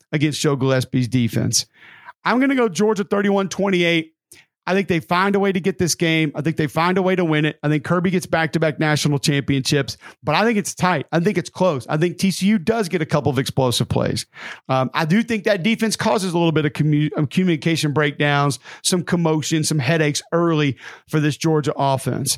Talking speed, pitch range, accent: 215 wpm, 150-180 Hz, American